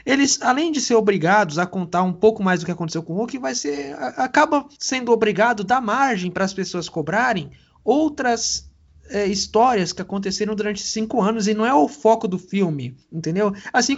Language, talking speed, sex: Portuguese, 195 wpm, male